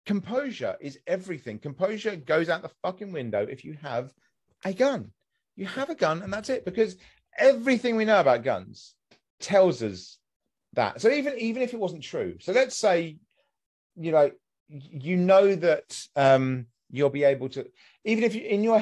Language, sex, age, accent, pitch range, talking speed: English, male, 30-49, British, 135-215 Hz, 170 wpm